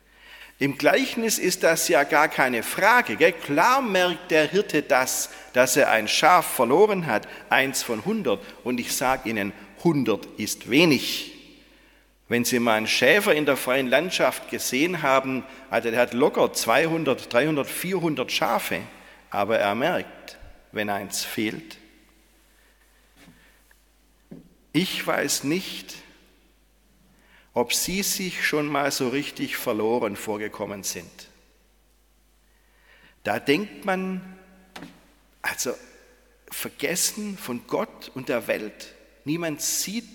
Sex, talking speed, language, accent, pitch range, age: male, 115 wpm, German, German, 120-190 Hz, 50-69